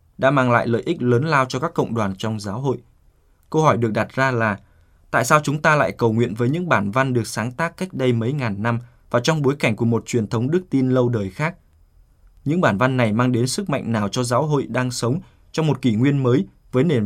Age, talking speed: 20-39, 255 wpm